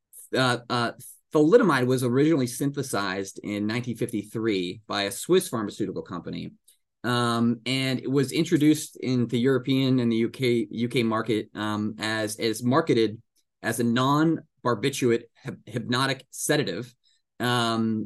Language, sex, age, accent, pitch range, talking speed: English, male, 20-39, American, 110-130 Hz, 125 wpm